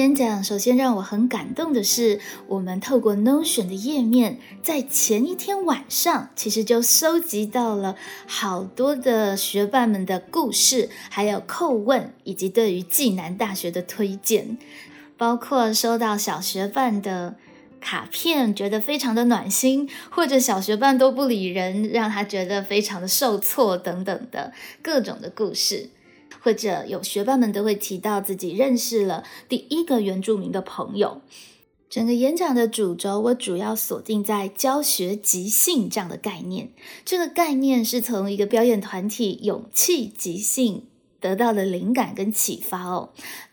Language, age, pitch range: Chinese, 20-39, 200-260 Hz